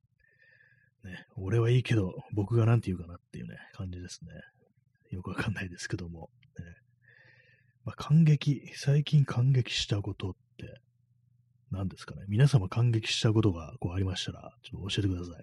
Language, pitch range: Japanese, 100-125 Hz